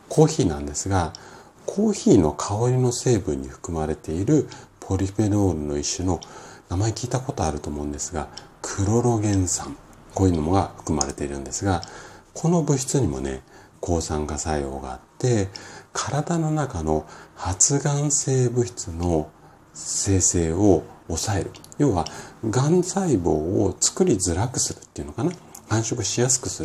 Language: Japanese